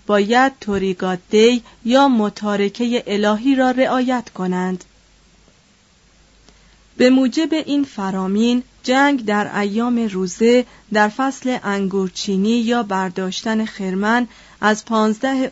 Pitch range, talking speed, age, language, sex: 200-250 Hz, 95 wpm, 30-49, Persian, female